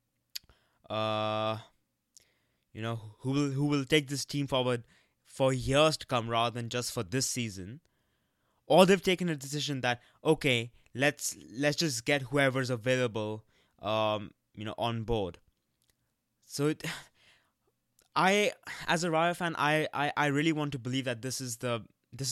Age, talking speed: 20-39, 155 wpm